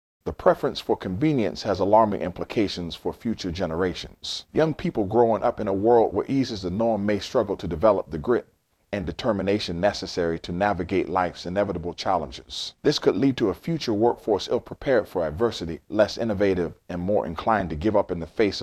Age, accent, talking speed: 40-59, American, 185 wpm